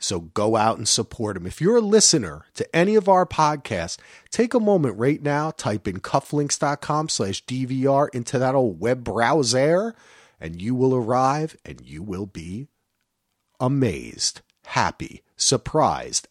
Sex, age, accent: male, 40-59, American